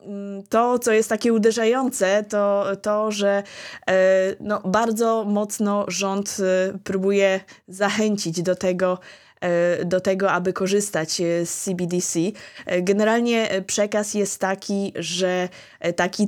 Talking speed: 100 wpm